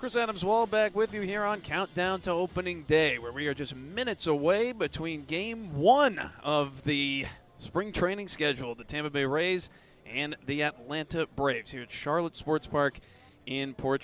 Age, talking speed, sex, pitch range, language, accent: 30-49, 170 wpm, male, 135-175 Hz, English, American